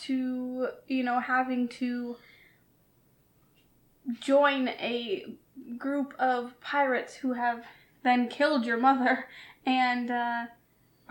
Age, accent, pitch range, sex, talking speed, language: 10-29, American, 240-275 Hz, female, 95 wpm, English